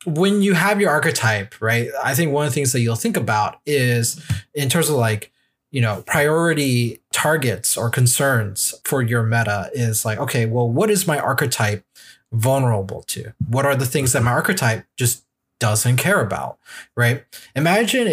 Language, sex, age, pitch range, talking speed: English, male, 20-39, 115-150 Hz, 175 wpm